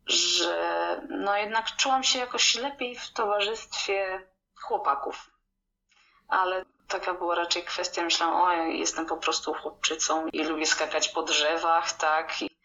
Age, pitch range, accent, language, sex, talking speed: 20-39, 160-185 Hz, native, Polish, female, 130 wpm